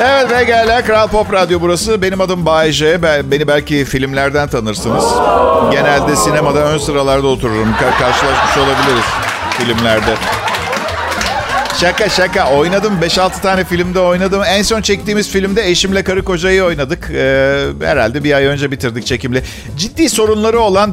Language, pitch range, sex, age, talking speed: Turkish, 140-195 Hz, male, 50-69, 140 wpm